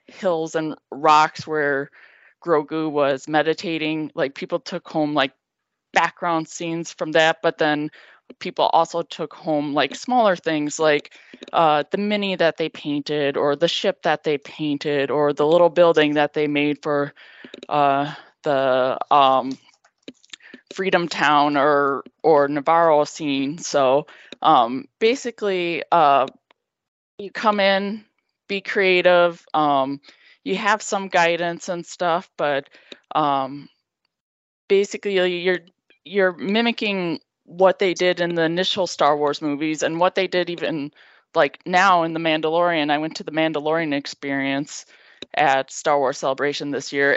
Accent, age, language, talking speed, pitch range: American, 20-39, English, 135 wpm, 150-180 Hz